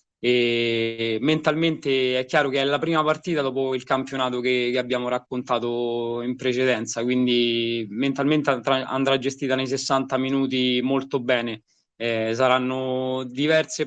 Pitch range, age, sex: 120-135 Hz, 20-39, male